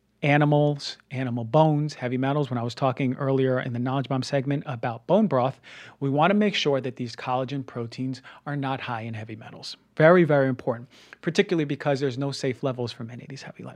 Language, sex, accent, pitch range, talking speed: English, male, American, 125-150 Hz, 205 wpm